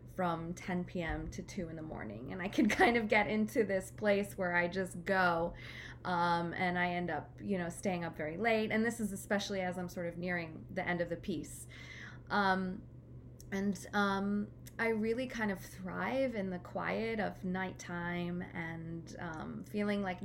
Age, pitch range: 20-39, 175-215 Hz